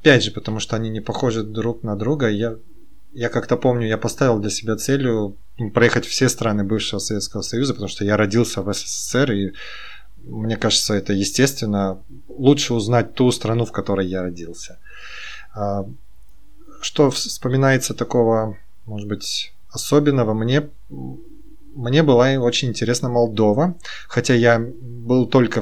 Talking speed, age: 140 wpm, 20-39